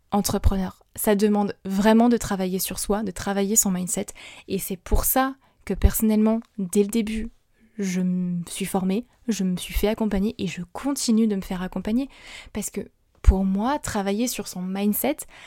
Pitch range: 205-240 Hz